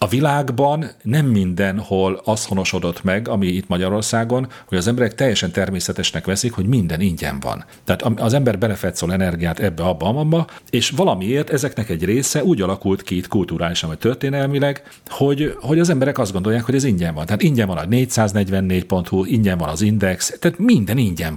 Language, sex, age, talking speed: Hungarian, male, 40-59, 180 wpm